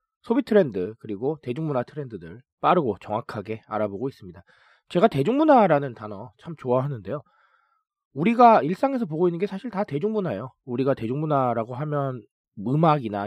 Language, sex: Korean, male